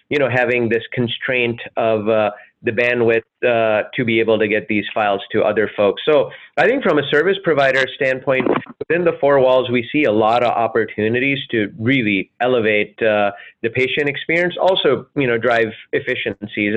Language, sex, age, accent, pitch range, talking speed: English, male, 30-49, American, 110-130 Hz, 180 wpm